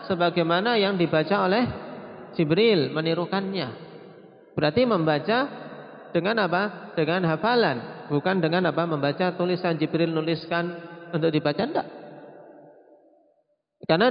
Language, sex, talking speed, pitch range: Indonesian, male, 100 wpm, 140-175 Hz